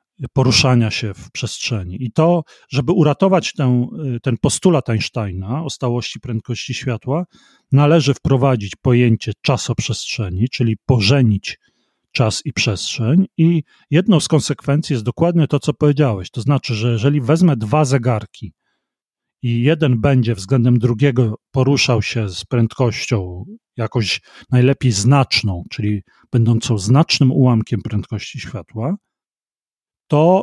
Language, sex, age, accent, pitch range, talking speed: Polish, male, 40-59, native, 120-155 Hz, 120 wpm